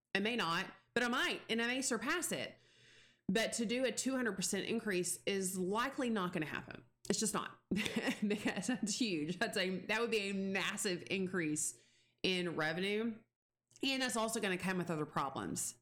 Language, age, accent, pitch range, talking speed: English, 30-49, American, 165-215 Hz, 175 wpm